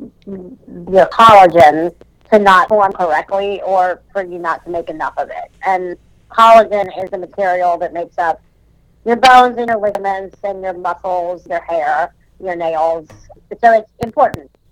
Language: English